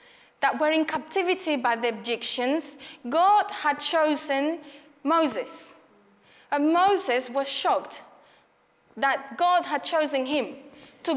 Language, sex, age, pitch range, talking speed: English, female, 30-49, 275-325 Hz, 115 wpm